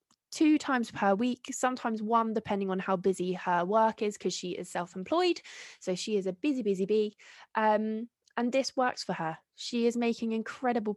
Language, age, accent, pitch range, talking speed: English, 20-39, British, 185-240 Hz, 185 wpm